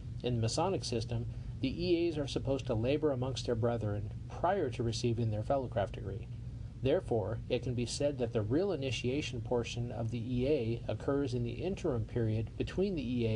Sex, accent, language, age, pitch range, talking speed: male, American, English, 40-59, 115-135 Hz, 185 wpm